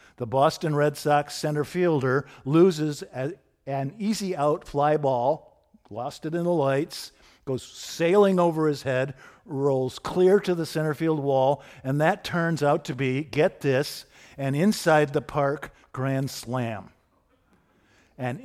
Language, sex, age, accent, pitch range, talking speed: English, male, 50-69, American, 145-210 Hz, 145 wpm